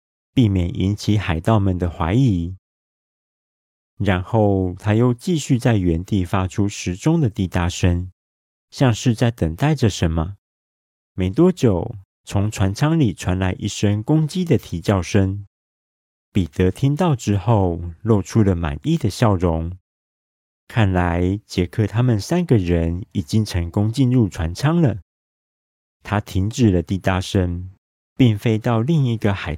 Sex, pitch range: male, 85-115 Hz